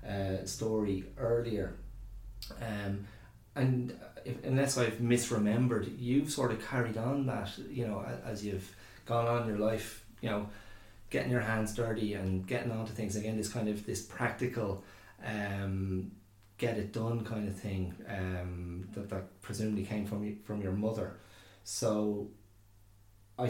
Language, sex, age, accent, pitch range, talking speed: English, male, 30-49, Irish, 100-120 Hz, 155 wpm